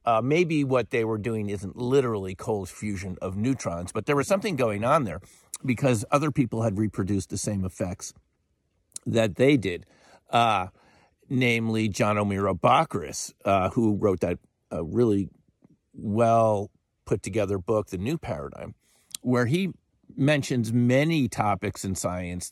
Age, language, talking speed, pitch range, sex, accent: 50-69, English, 145 wpm, 95-125 Hz, male, American